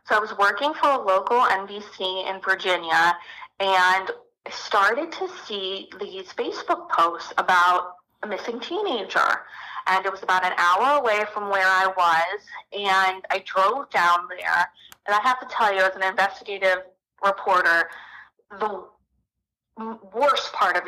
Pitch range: 180-210 Hz